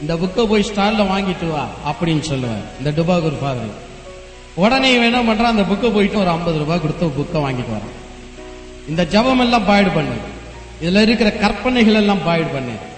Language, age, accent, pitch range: Tamil, 30-49, native, 160-235 Hz